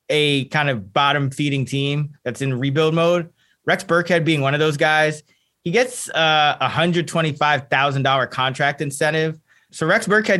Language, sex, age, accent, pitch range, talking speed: English, male, 20-39, American, 130-160 Hz, 155 wpm